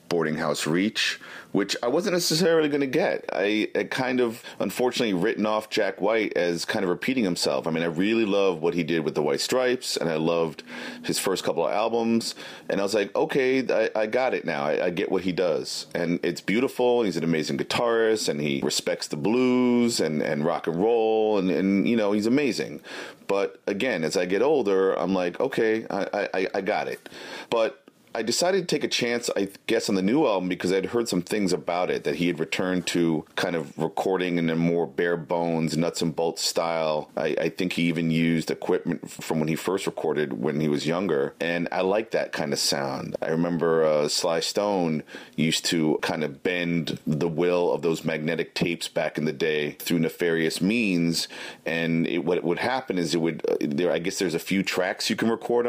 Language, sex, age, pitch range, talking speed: English, male, 40-59, 85-115 Hz, 215 wpm